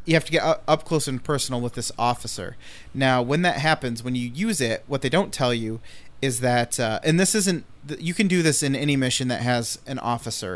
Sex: male